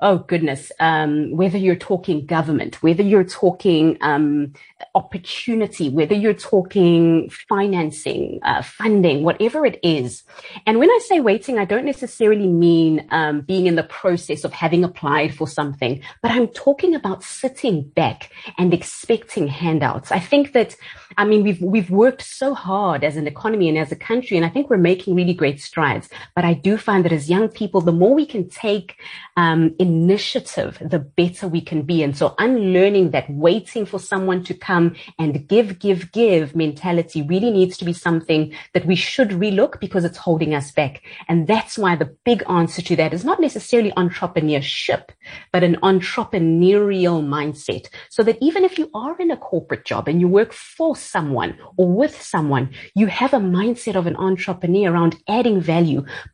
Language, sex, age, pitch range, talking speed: English, female, 30-49, 165-210 Hz, 180 wpm